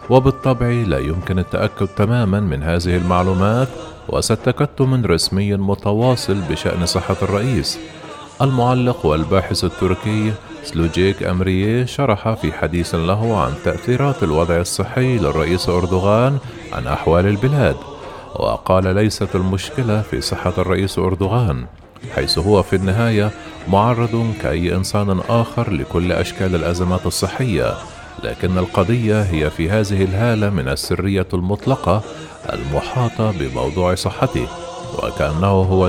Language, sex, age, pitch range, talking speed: Arabic, male, 40-59, 90-115 Hz, 110 wpm